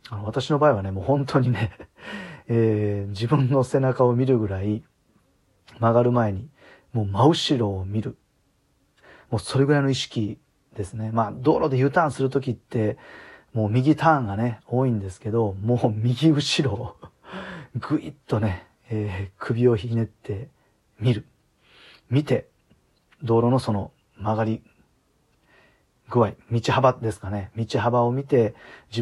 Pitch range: 105-135 Hz